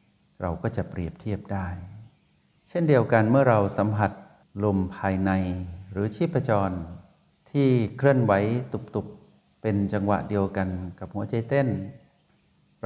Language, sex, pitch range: Thai, male, 100-115 Hz